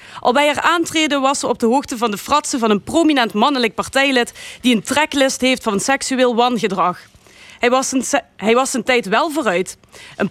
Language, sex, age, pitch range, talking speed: Dutch, female, 30-49, 220-280 Hz, 185 wpm